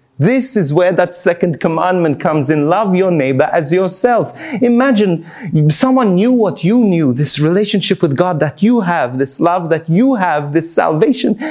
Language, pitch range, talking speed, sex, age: English, 125-180 Hz, 170 wpm, male, 30-49